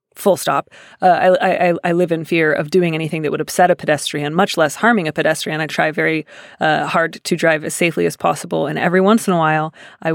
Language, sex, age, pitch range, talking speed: English, female, 30-49, 165-190 Hz, 235 wpm